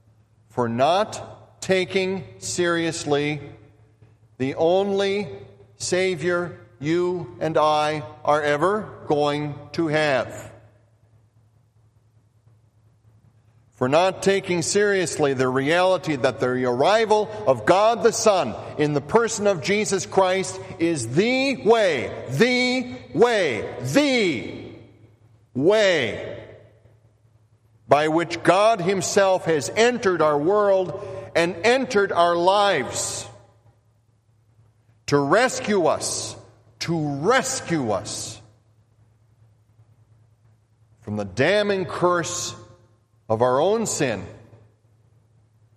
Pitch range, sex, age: 110-180 Hz, male, 50-69